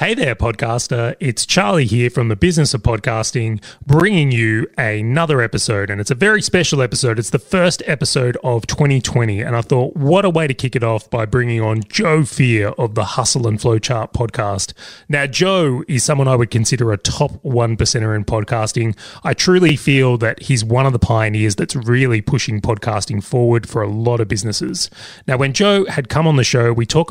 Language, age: English, 30-49